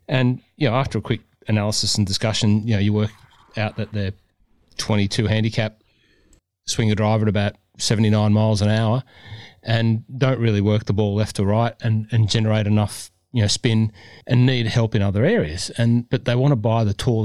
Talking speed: 200 wpm